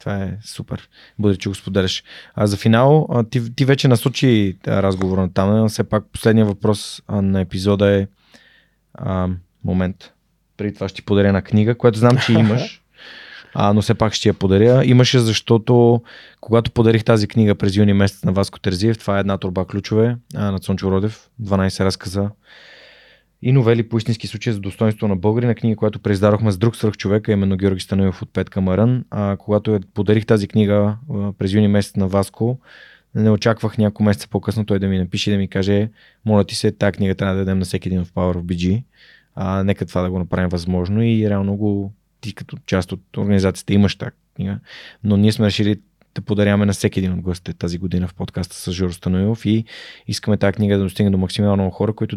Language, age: Bulgarian, 20-39